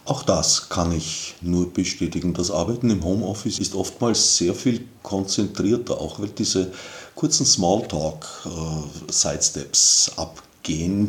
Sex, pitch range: male, 80-110 Hz